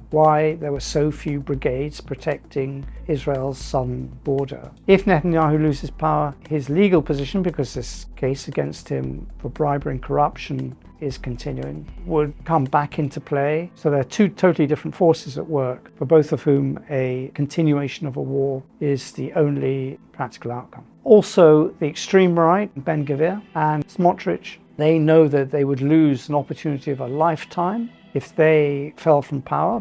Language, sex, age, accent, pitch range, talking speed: English, male, 50-69, British, 140-160 Hz, 160 wpm